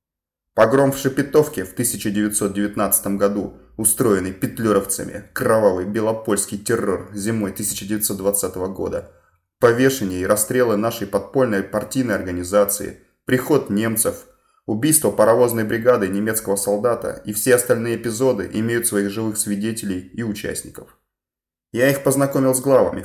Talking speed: 110 wpm